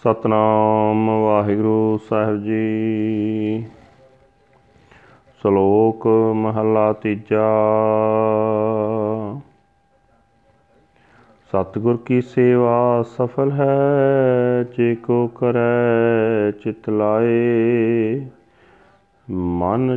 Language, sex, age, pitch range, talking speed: Punjabi, male, 40-59, 110-125 Hz, 55 wpm